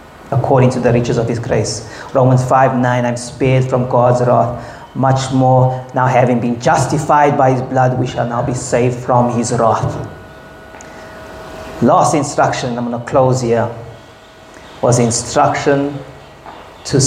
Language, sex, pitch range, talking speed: English, male, 125-150 Hz, 145 wpm